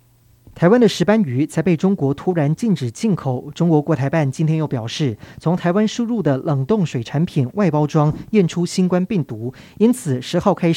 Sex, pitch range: male, 135-185 Hz